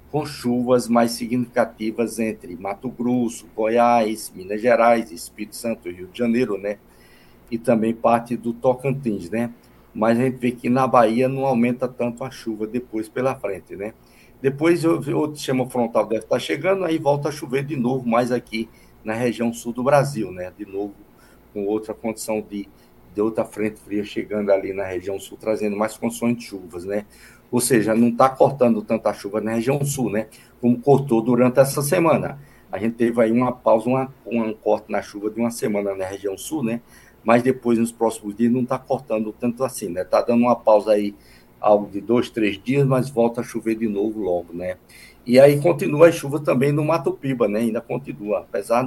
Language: Portuguese